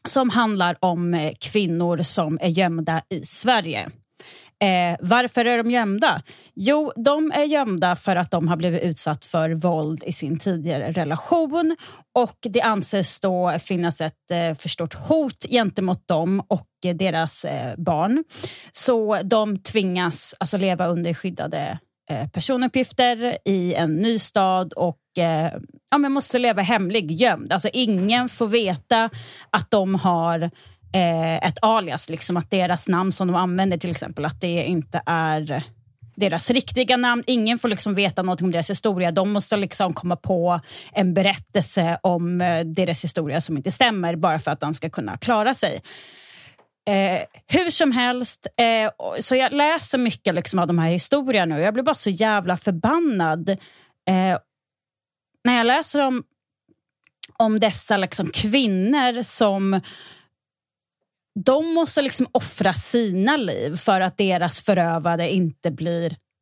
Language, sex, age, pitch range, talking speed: Swedish, female, 30-49, 170-235 Hz, 140 wpm